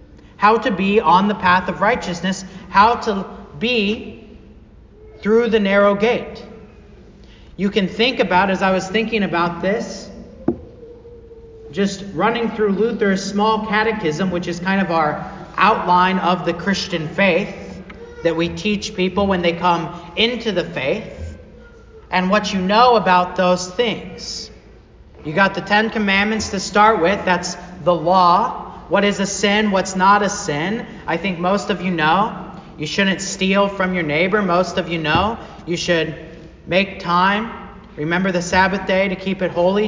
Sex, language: male, English